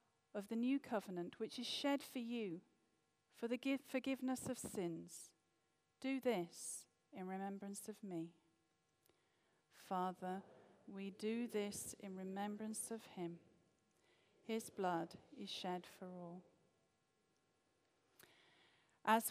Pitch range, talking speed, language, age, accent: 180-250 Hz, 110 wpm, English, 50-69, British